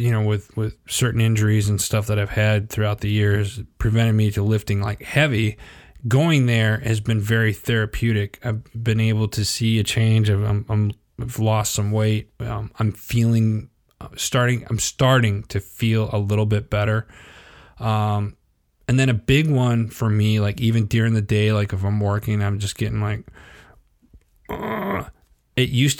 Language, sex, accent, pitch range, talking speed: English, male, American, 105-120 Hz, 175 wpm